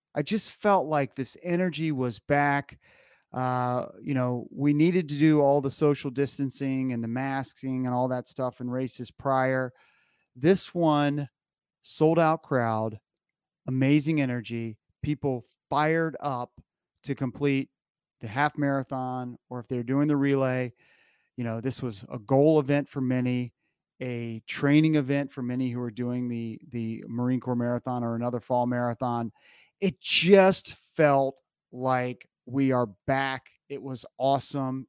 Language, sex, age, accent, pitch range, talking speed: English, male, 30-49, American, 125-145 Hz, 150 wpm